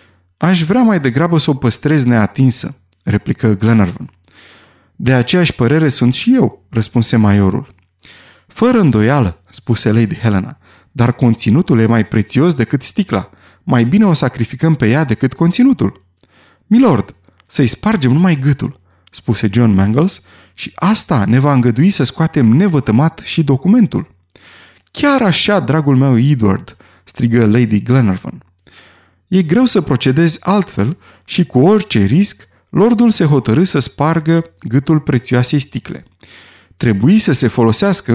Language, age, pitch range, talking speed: Romanian, 30-49, 110-175 Hz, 135 wpm